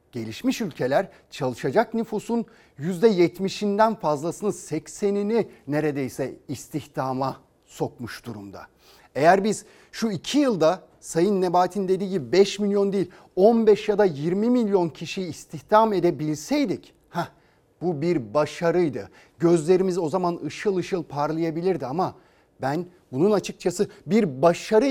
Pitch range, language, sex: 155-215 Hz, Turkish, male